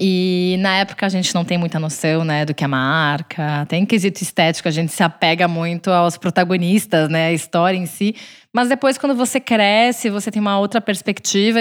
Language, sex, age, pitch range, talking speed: Portuguese, female, 20-39, 175-220 Hz, 205 wpm